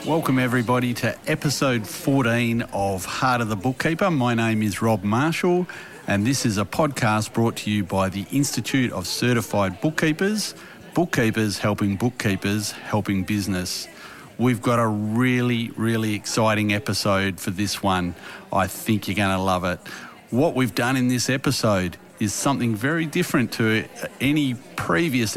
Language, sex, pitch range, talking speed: English, male, 105-135 Hz, 150 wpm